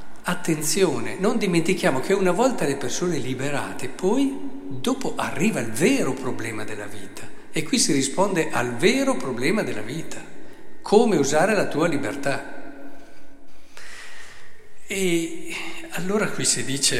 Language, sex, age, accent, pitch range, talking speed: Italian, male, 50-69, native, 125-175 Hz, 125 wpm